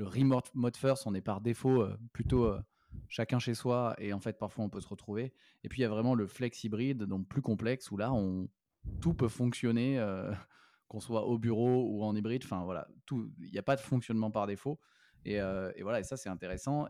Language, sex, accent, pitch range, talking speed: French, male, French, 100-120 Hz, 230 wpm